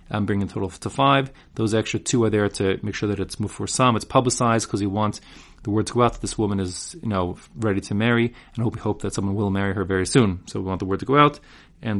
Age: 30-49